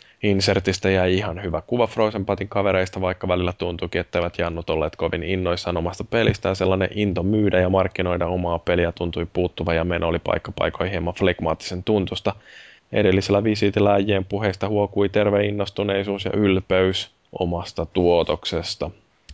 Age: 10-29